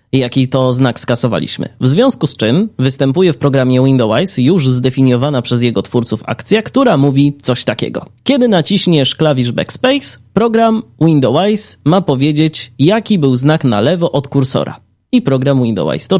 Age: 20-39